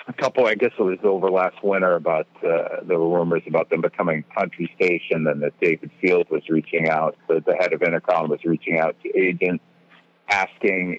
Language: English